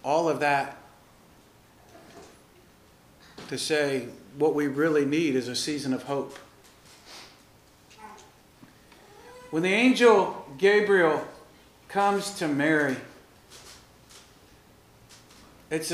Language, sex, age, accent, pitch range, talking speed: English, male, 50-69, American, 140-175 Hz, 85 wpm